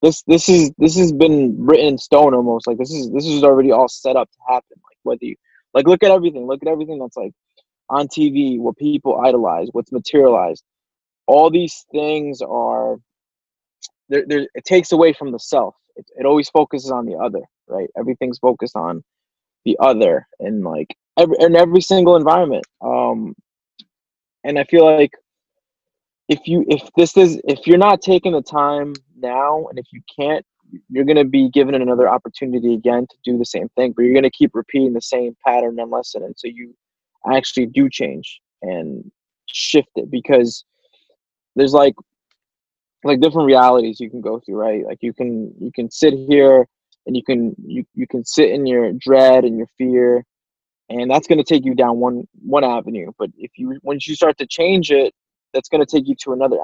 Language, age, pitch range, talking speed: English, 20-39, 125-160 Hz, 190 wpm